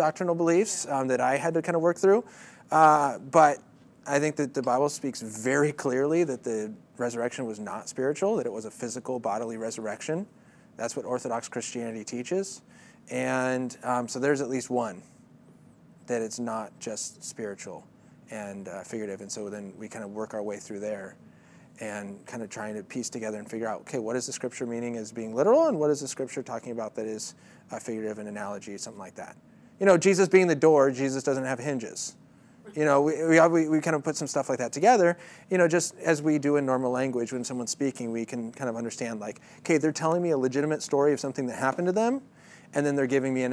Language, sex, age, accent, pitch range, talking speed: English, male, 30-49, American, 115-155 Hz, 220 wpm